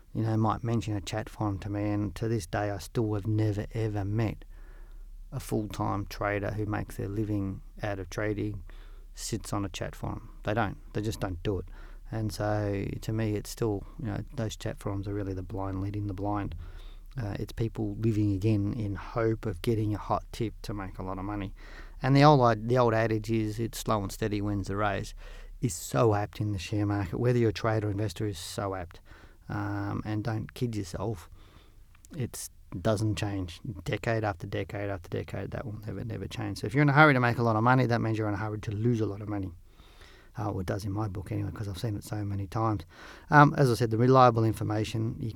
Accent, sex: Australian, male